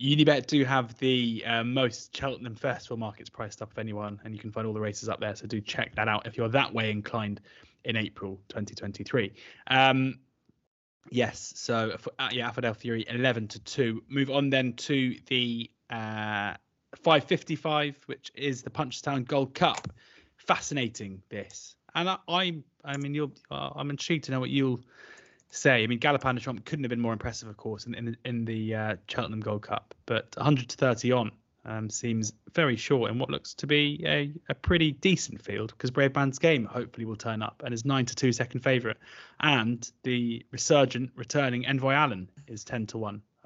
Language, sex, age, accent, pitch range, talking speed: English, male, 20-39, British, 110-140 Hz, 190 wpm